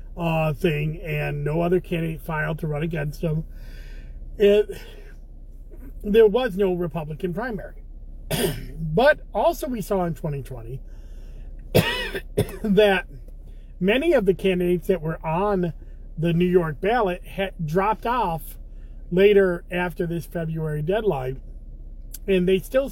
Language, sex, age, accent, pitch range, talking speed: English, male, 40-59, American, 155-195 Hz, 120 wpm